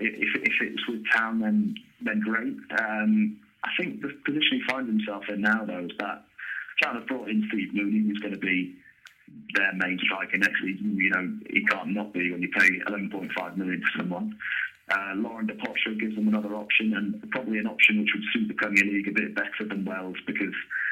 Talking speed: 205 wpm